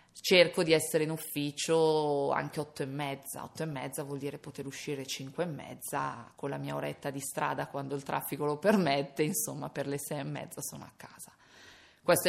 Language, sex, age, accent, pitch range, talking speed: Italian, female, 20-39, native, 140-160 Hz, 195 wpm